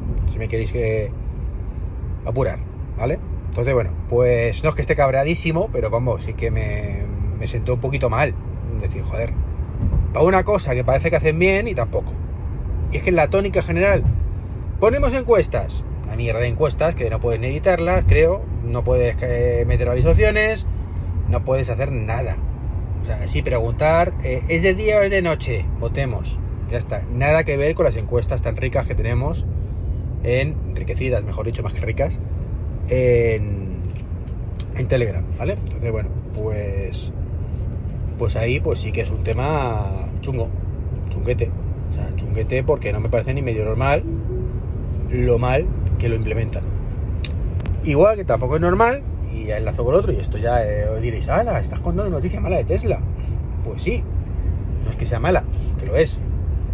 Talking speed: 170 wpm